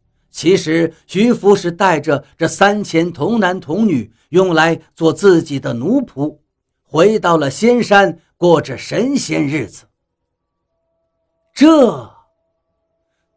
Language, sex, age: Chinese, male, 50-69